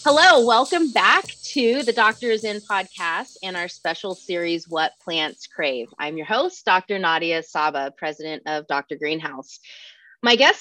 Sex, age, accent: female, 30-49, American